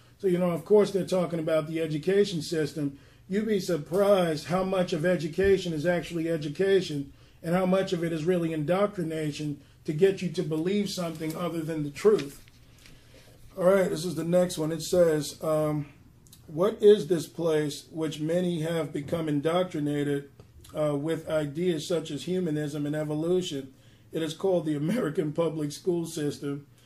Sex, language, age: male, English, 40-59